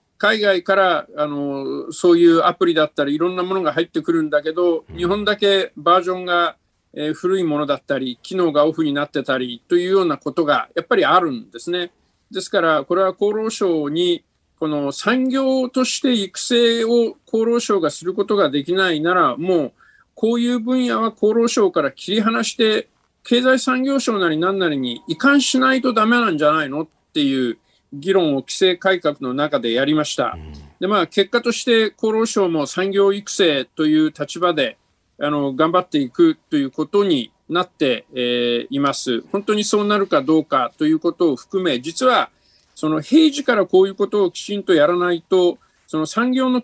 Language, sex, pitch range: Japanese, male, 155-235 Hz